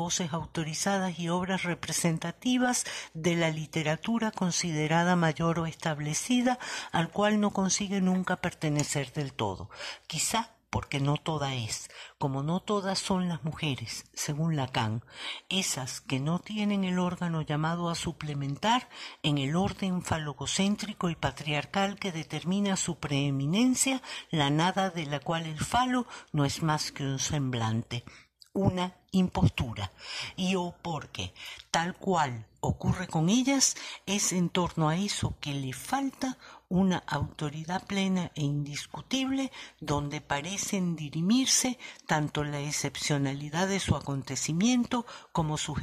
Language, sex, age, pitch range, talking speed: Portuguese, female, 50-69, 145-190 Hz, 130 wpm